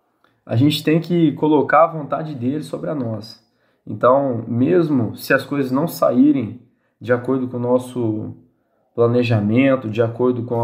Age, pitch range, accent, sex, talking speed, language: 20-39, 115-150 Hz, Brazilian, male, 150 wpm, Portuguese